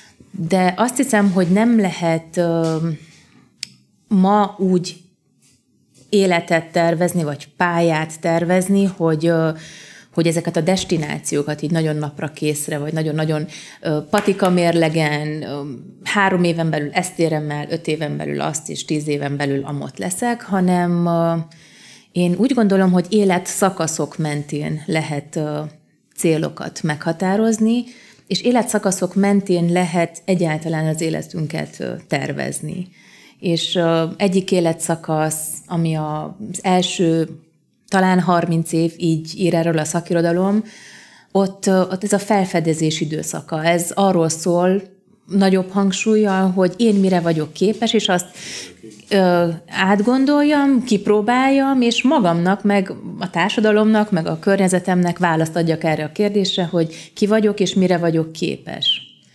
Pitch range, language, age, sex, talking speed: 160-195 Hz, Hungarian, 30-49, female, 115 wpm